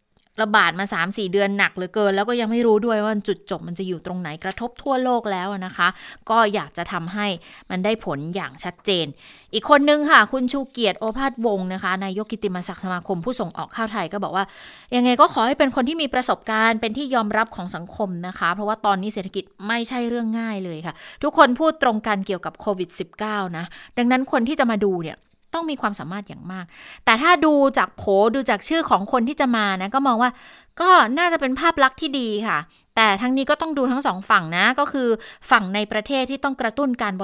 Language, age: Thai, 20-39